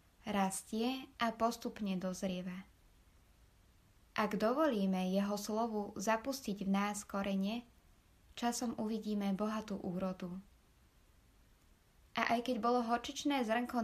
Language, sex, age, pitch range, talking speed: Slovak, female, 20-39, 190-230 Hz, 95 wpm